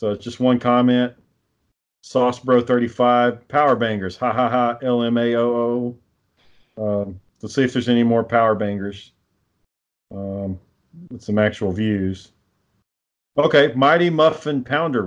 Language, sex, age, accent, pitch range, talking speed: English, male, 40-59, American, 110-140 Hz, 145 wpm